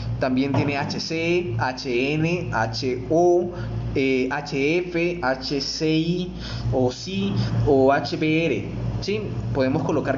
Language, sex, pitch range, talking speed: Spanish, male, 120-165 Hz, 90 wpm